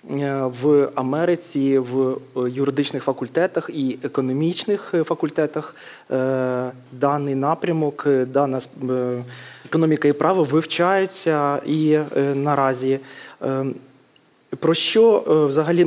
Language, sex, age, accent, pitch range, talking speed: Ukrainian, male, 20-39, native, 140-165 Hz, 75 wpm